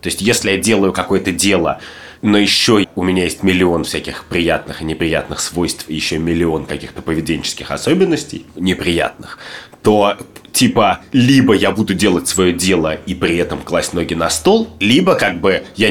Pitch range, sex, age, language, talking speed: 90-115 Hz, male, 20-39, Russian, 165 wpm